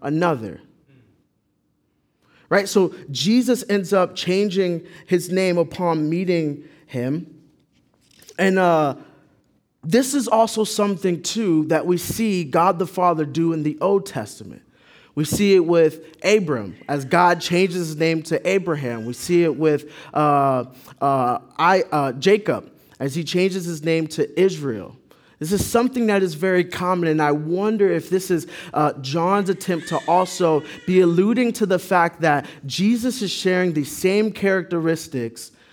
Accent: American